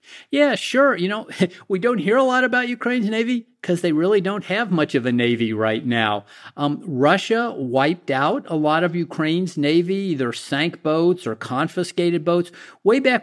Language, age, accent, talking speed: English, 50-69, American, 180 wpm